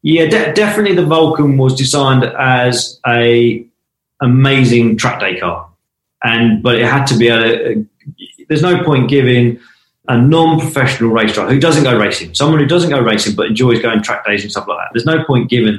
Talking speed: 190 wpm